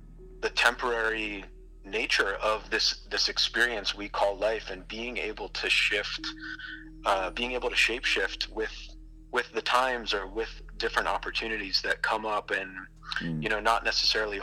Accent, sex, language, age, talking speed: American, male, English, 30-49, 155 wpm